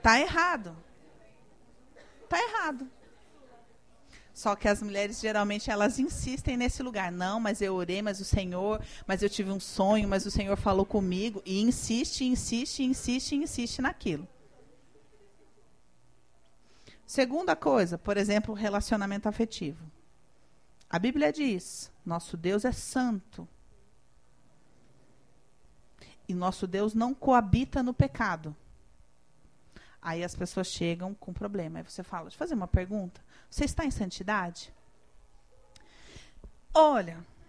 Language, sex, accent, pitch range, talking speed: Portuguese, female, Brazilian, 175-255 Hz, 120 wpm